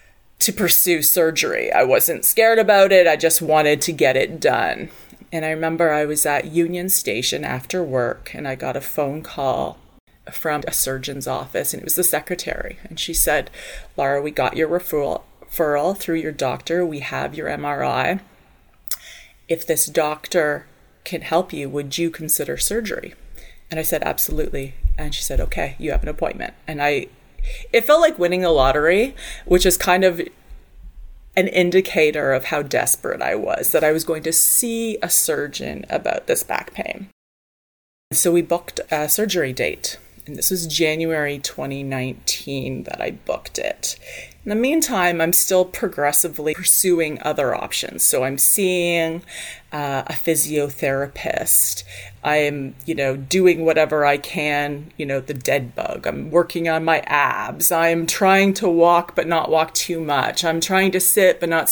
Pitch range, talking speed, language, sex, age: 150-180 Hz, 165 wpm, English, female, 30-49